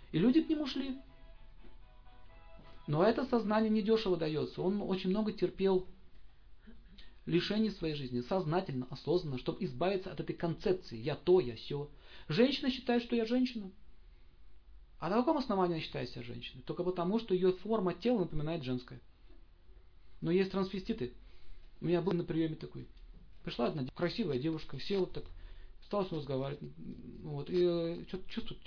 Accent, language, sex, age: native, Russian, male, 40-59